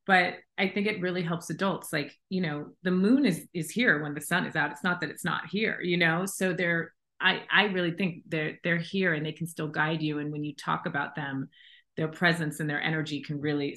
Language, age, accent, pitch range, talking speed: English, 30-49, American, 155-195 Hz, 245 wpm